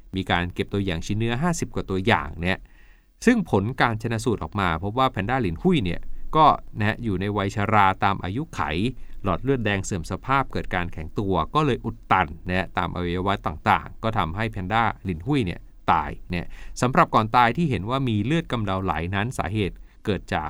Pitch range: 90-125 Hz